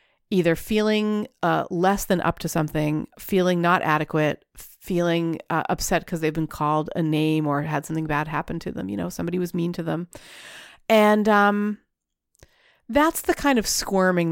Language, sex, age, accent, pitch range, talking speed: English, female, 40-59, American, 160-215 Hz, 170 wpm